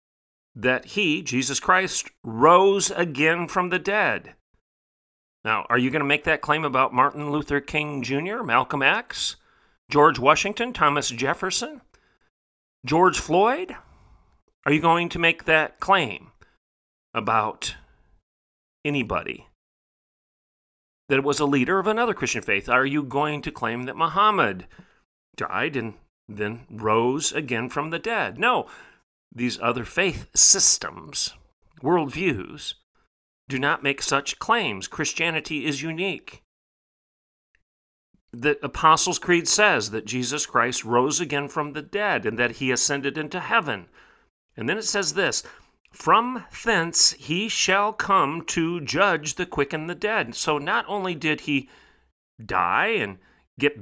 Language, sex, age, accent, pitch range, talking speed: English, male, 40-59, American, 125-175 Hz, 135 wpm